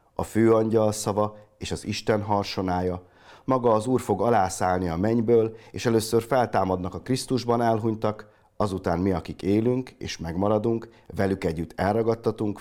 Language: Hungarian